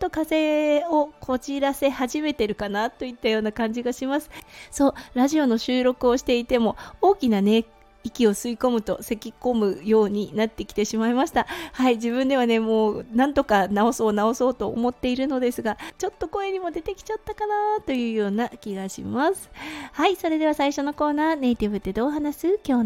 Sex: female